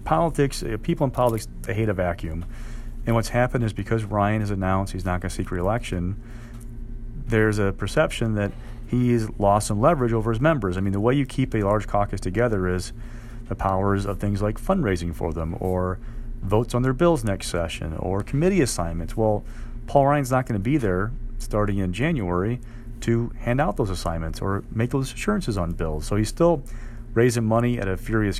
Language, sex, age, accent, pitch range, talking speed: English, male, 40-59, American, 95-115 Hz, 195 wpm